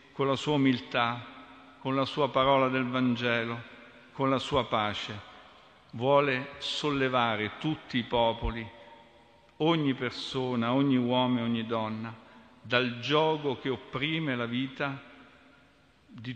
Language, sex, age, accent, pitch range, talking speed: Italian, male, 50-69, native, 120-140 Hz, 120 wpm